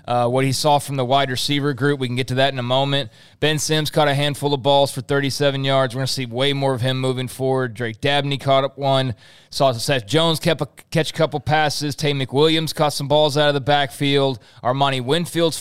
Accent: American